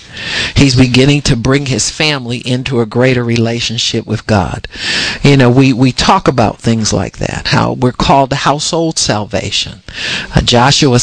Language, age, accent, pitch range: English, 50-69, American, 115-140 Hz